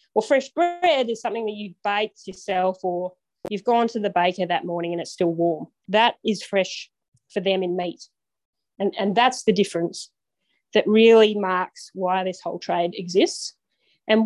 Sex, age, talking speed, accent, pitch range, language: female, 30-49, 180 wpm, Australian, 180-215 Hz, English